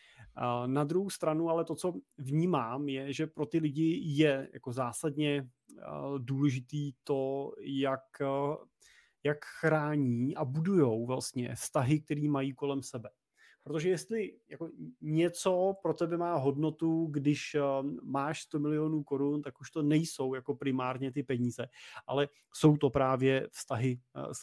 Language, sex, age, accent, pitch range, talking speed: Czech, male, 30-49, native, 125-160 Hz, 135 wpm